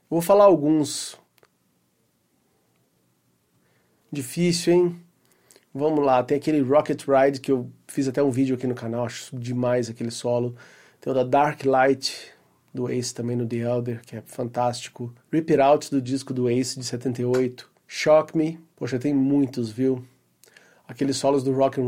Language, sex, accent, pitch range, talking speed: Portuguese, male, Brazilian, 125-150 Hz, 160 wpm